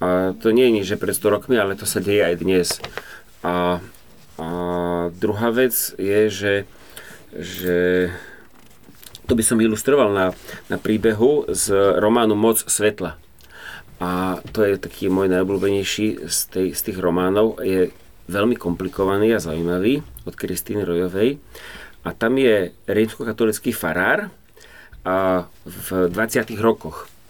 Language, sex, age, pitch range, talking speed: Slovak, male, 30-49, 95-115 Hz, 130 wpm